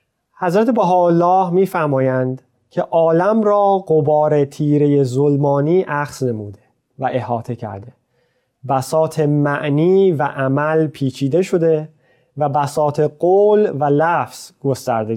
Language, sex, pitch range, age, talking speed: Persian, male, 125-170 Hz, 30-49, 105 wpm